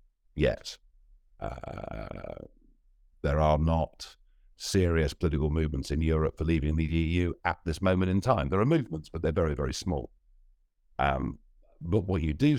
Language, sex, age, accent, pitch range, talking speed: English, male, 50-69, British, 75-95 Hz, 155 wpm